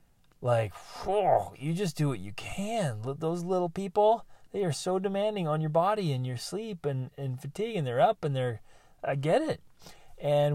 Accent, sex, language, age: American, male, English, 30-49